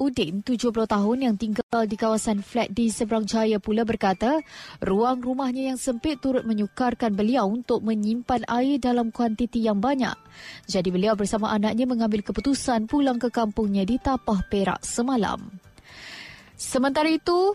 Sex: female